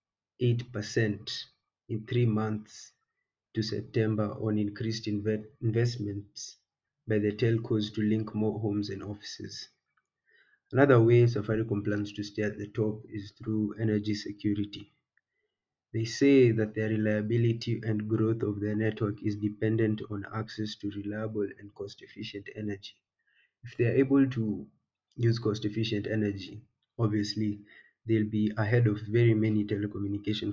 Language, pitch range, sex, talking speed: English, 105-115 Hz, male, 130 wpm